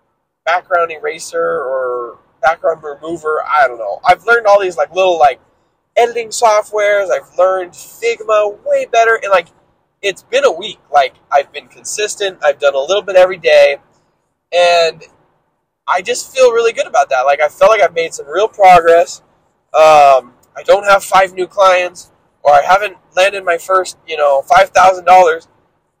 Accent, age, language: American, 20-39, English